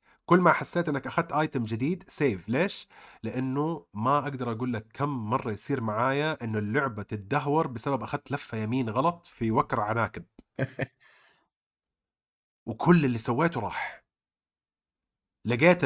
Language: Arabic